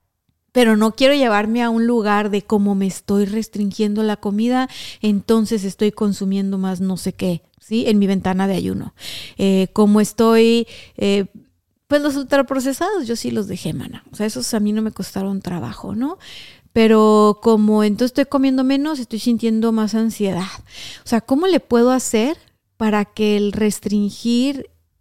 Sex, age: female, 30-49